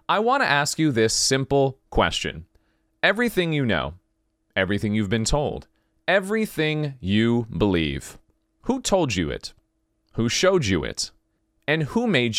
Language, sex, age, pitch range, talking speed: English, male, 30-49, 105-170 Hz, 140 wpm